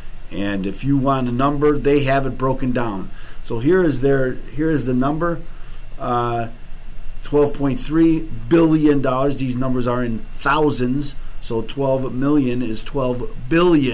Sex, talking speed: male, 145 wpm